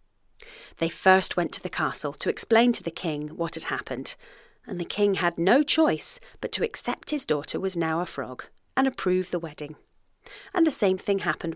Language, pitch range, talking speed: English, 165-250 Hz, 195 wpm